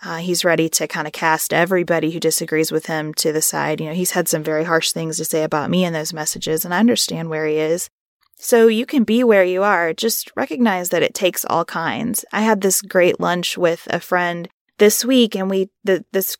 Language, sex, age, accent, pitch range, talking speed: English, female, 20-39, American, 165-200 Hz, 230 wpm